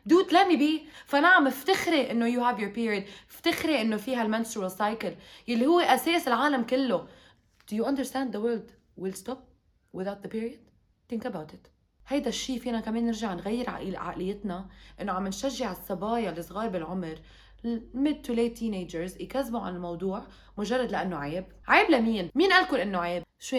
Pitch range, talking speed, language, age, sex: 185-255 Hz, 160 wpm, Arabic, 20-39, female